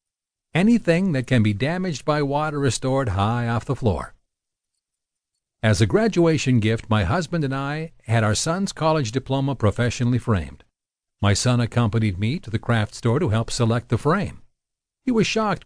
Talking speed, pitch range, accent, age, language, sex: 170 wpm, 110-155 Hz, American, 50-69, English, male